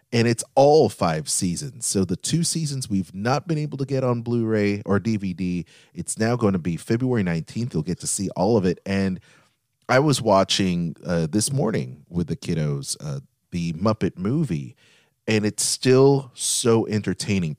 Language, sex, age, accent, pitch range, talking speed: English, male, 30-49, American, 85-115 Hz, 175 wpm